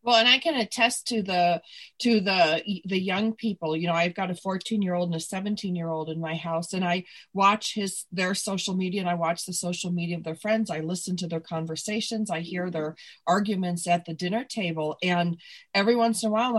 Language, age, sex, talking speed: English, 40-59, female, 215 wpm